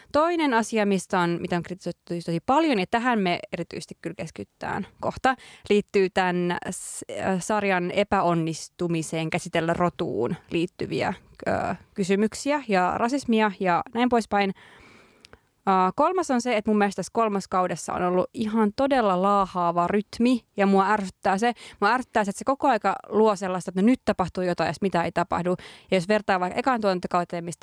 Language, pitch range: Finnish, 180-230 Hz